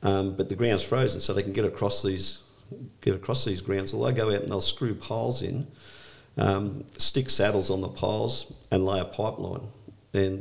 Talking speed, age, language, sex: 200 wpm, 50-69, English, male